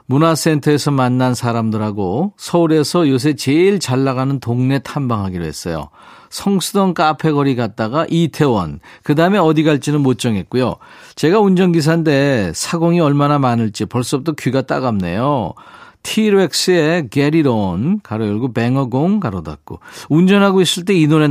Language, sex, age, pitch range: Korean, male, 50-69, 115-165 Hz